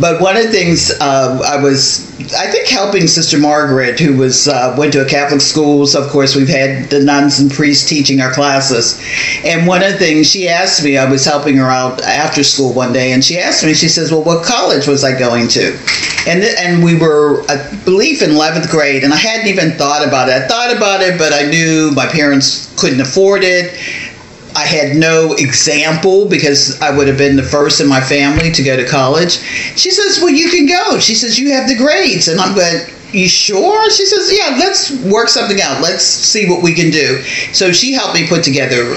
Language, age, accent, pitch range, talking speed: English, 50-69, American, 140-185 Hz, 225 wpm